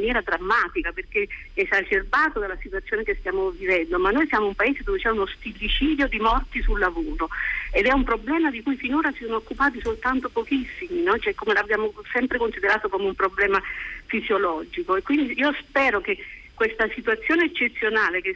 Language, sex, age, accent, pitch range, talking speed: Italian, female, 50-69, native, 220-310 Hz, 175 wpm